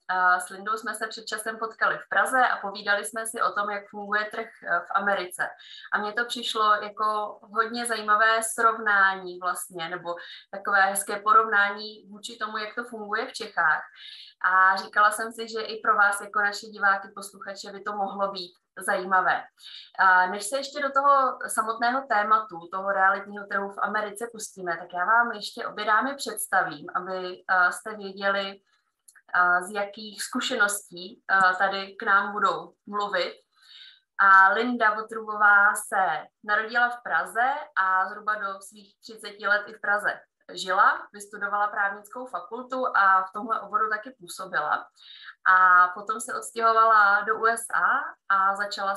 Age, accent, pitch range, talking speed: 20-39, native, 195-225 Hz, 150 wpm